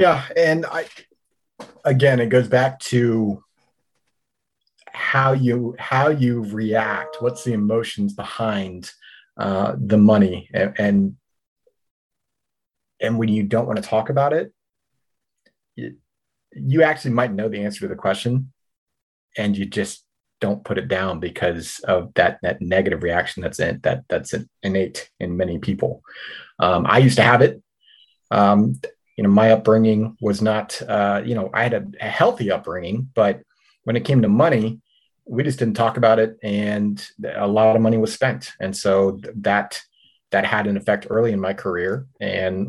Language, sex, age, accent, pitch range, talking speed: English, male, 30-49, American, 100-120 Hz, 160 wpm